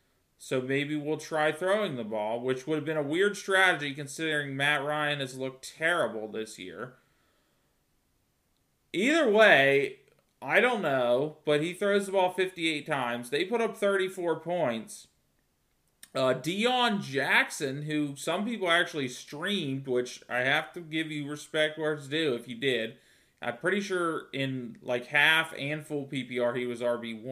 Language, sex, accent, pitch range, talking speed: English, male, American, 125-165 Hz, 160 wpm